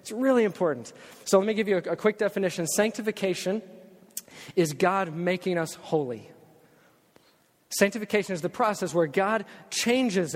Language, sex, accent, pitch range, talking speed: English, male, American, 165-205 Hz, 145 wpm